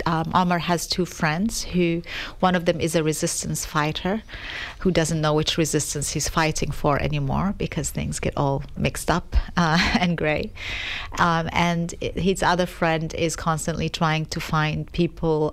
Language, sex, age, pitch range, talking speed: English, female, 40-59, 155-180 Hz, 160 wpm